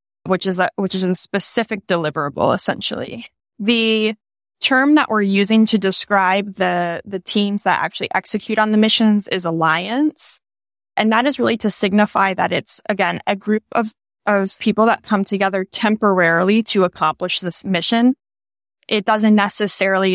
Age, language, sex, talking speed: 10-29, English, female, 155 wpm